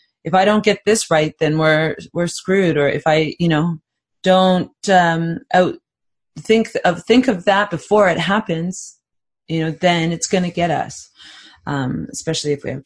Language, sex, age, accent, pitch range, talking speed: English, female, 30-49, American, 150-185 Hz, 175 wpm